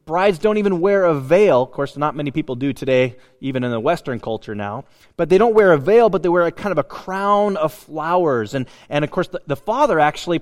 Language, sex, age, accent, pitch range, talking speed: English, male, 30-49, American, 145-190 Hz, 250 wpm